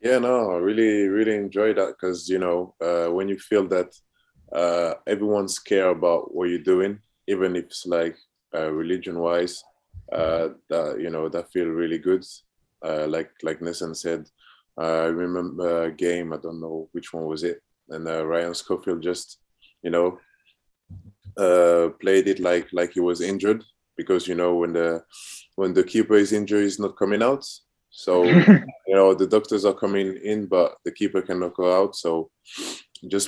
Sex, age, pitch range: male, 20-39, 80-95 Hz